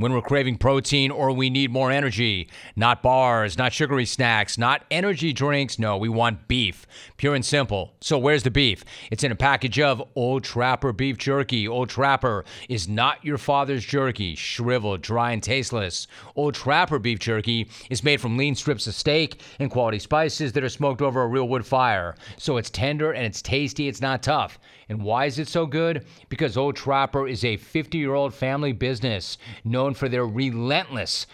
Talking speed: 190 wpm